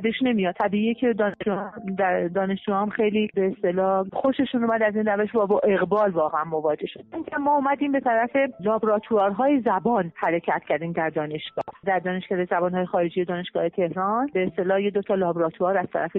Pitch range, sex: 185-230 Hz, female